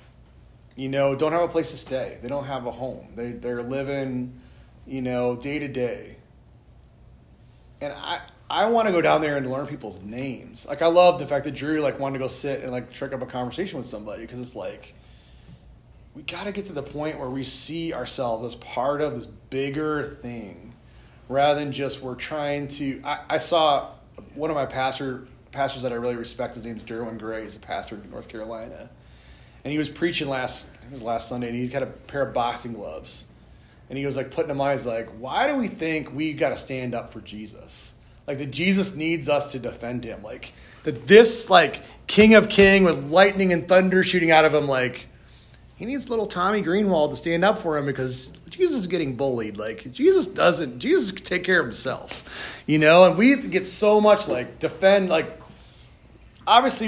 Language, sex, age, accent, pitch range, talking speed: English, male, 30-49, American, 120-165 Hz, 210 wpm